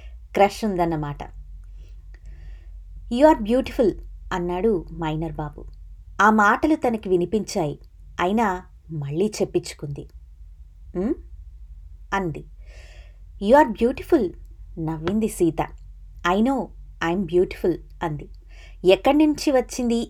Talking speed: 80 wpm